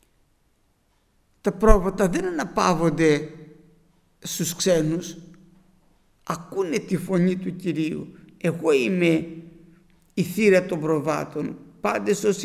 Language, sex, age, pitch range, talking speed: Greek, male, 60-79, 165-220 Hz, 90 wpm